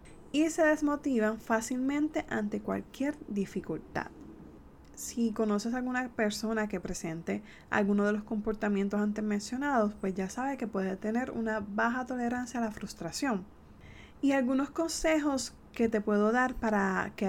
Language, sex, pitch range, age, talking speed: Spanish, female, 195-250 Hz, 20-39, 140 wpm